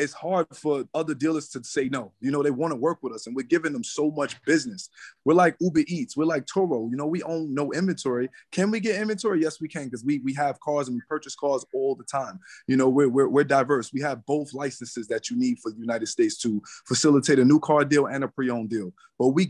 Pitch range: 130-160 Hz